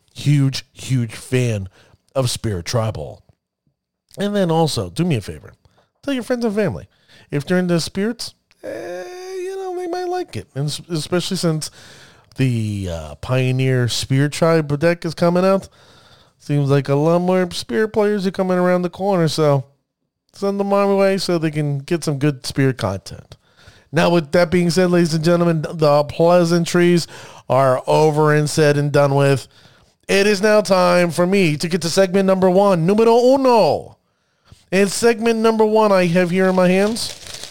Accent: American